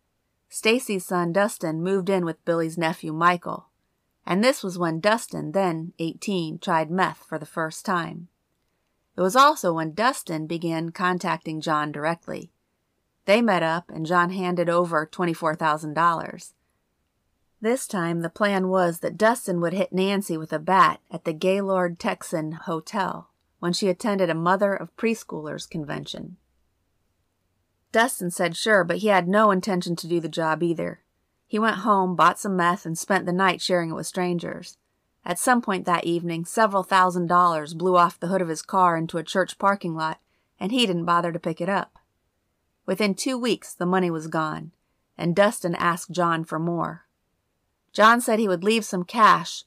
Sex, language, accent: female, English, American